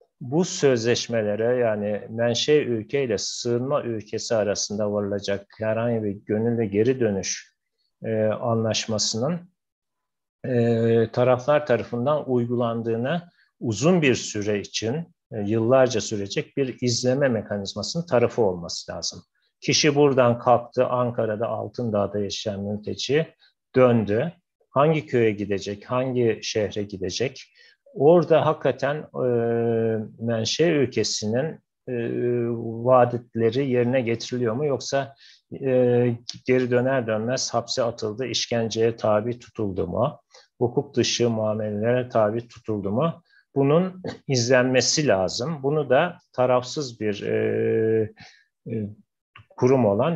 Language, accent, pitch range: Turkish, native, 110-130 Hz